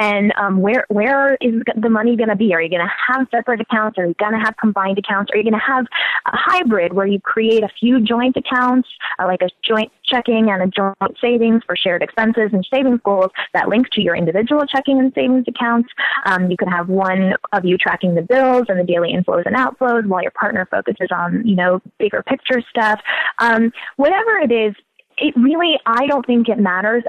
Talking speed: 220 wpm